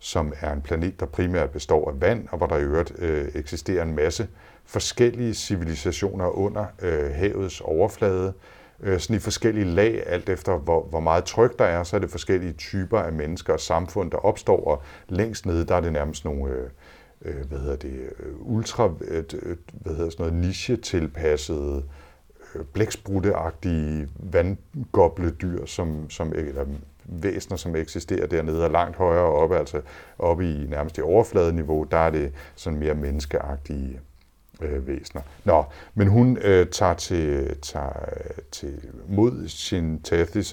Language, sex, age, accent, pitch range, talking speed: Danish, male, 60-79, native, 75-95 Hz, 145 wpm